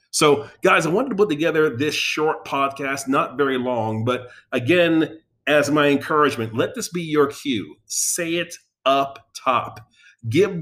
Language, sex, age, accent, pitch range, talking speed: English, male, 40-59, American, 110-145 Hz, 160 wpm